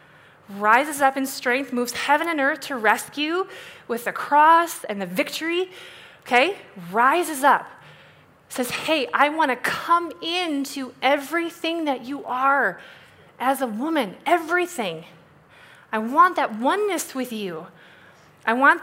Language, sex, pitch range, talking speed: English, female, 230-315 Hz, 135 wpm